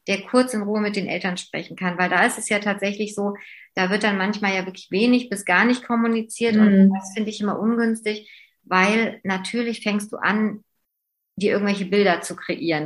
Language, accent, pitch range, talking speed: German, German, 195-230 Hz, 200 wpm